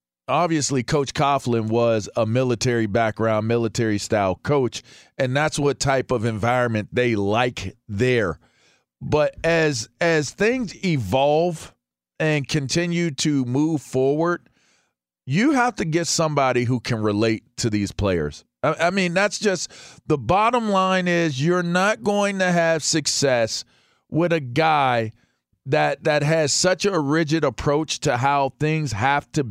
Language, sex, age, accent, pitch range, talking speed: English, male, 40-59, American, 115-155 Hz, 140 wpm